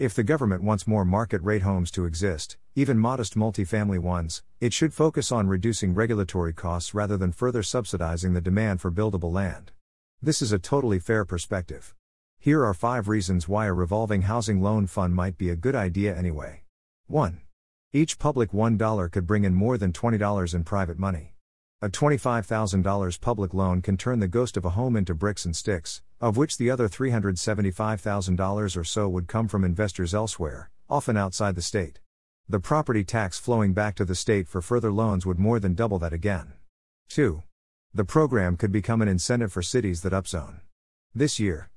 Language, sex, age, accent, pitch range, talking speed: English, male, 50-69, American, 90-110 Hz, 180 wpm